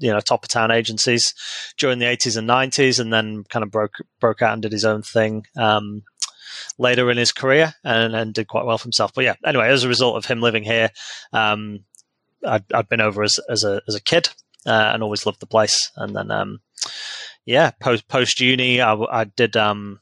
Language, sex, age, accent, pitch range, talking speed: English, male, 30-49, British, 105-125 Hz, 220 wpm